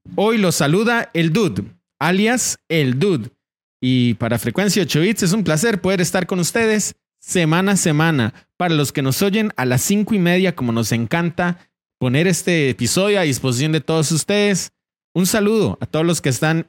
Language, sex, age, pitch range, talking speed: Spanish, male, 30-49, 120-185 Hz, 185 wpm